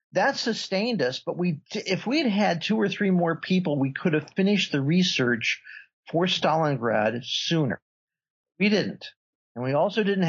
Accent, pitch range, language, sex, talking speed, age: American, 130-180 Hz, English, male, 165 wpm, 50-69